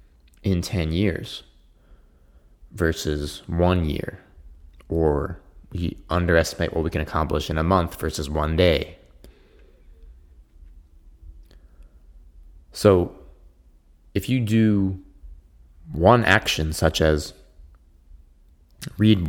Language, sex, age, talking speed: English, male, 30-49, 85 wpm